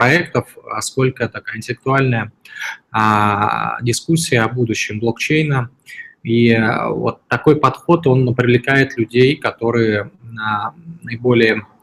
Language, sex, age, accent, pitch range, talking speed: Russian, male, 20-39, native, 110-130 Hz, 95 wpm